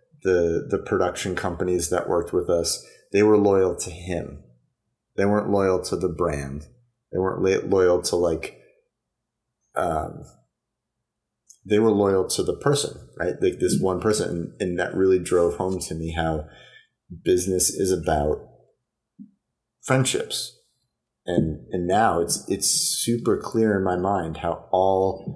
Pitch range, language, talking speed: 85-115 Hz, English, 145 wpm